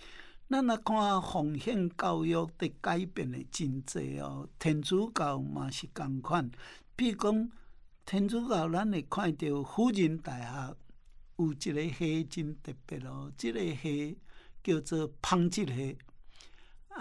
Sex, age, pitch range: male, 60-79, 145-190 Hz